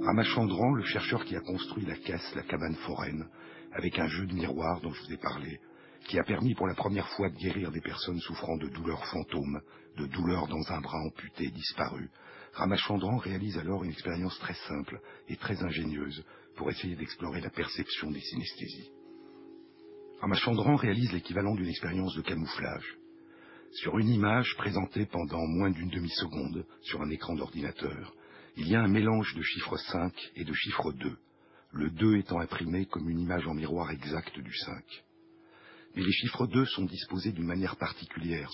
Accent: French